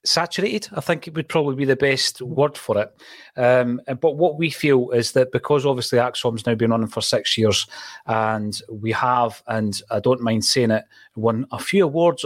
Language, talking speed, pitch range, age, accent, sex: English, 205 wpm, 115-140 Hz, 30-49, British, male